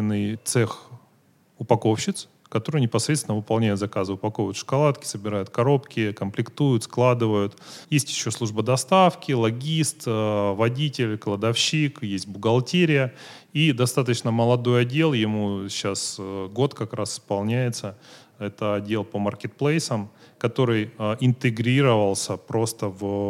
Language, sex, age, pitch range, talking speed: Russian, male, 30-49, 110-140 Hz, 100 wpm